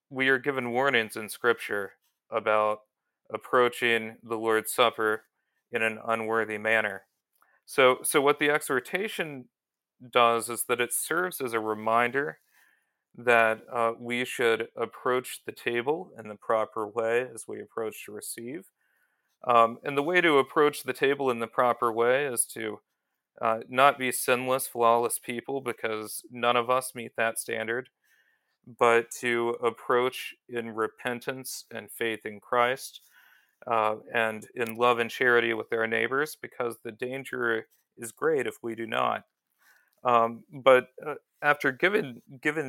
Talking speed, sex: 145 wpm, male